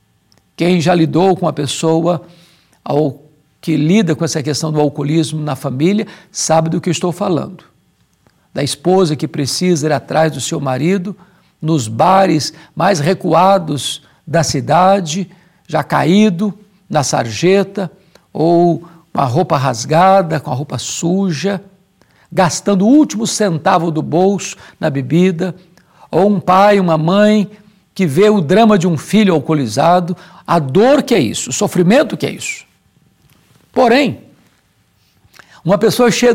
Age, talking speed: 60-79, 140 wpm